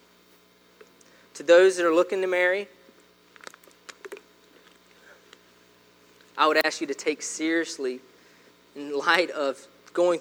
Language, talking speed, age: English, 105 wpm, 20-39